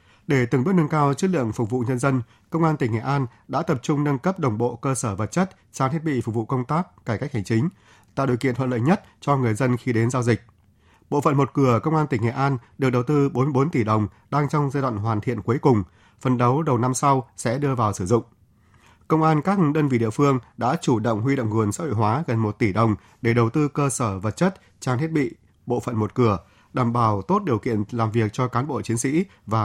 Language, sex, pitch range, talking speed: Vietnamese, male, 110-140 Hz, 265 wpm